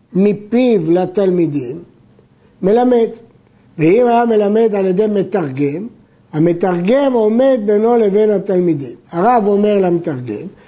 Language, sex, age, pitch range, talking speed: Hebrew, male, 50-69, 180-235 Hz, 95 wpm